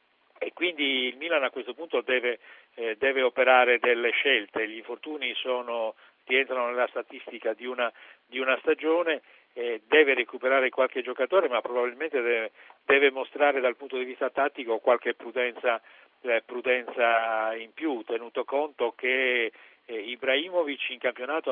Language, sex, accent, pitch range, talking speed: Italian, male, native, 120-155 Hz, 145 wpm